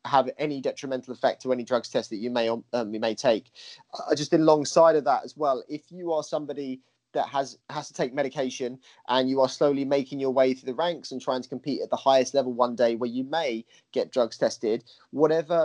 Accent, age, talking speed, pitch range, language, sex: British, 30-49, 225 wpm, 125-140 Hz, English, male